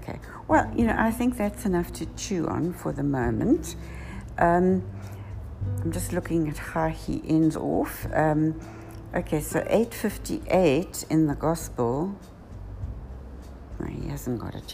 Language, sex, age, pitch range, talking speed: English, female, 60-79, 100-150 Hz, 145 wpm